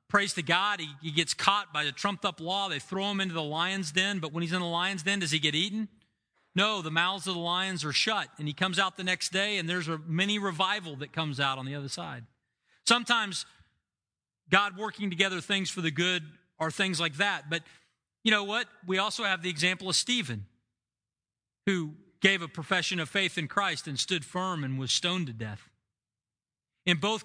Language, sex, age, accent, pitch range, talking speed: English, male, 40-59, American, 135-190 Hz, 215 wpm